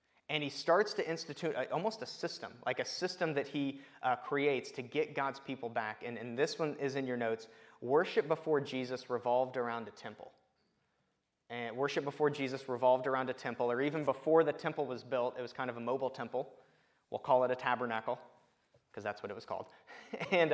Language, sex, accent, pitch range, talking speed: English, male, American, 120-155 Hz, 200 wpm